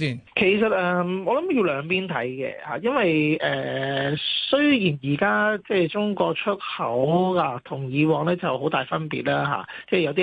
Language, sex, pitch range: Chinese, male, 150-185 Hz